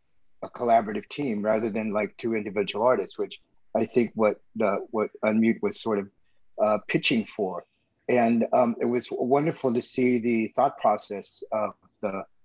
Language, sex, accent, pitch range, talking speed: English, male, American, 105-130 Hz, 165 wpm